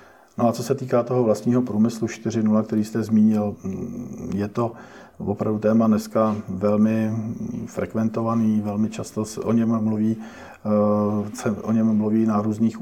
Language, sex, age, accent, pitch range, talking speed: Czech, male, 50-69, native, 105-110 Hz, 125 wpm